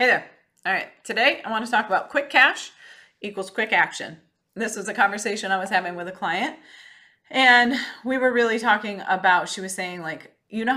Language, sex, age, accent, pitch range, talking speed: English, female, 30-49, American, 175-240 Hz, 205 wpm